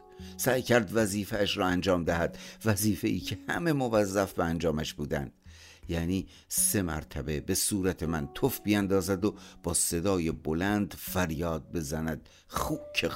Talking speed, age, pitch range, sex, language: 130 wpm, 50-69, 80-105 Hz, male, Persian